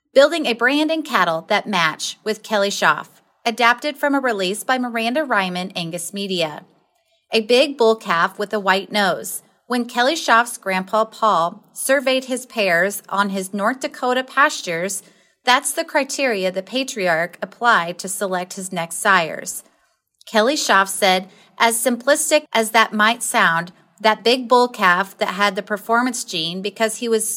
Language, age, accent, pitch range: English, 30-49, American, 195-255 Hz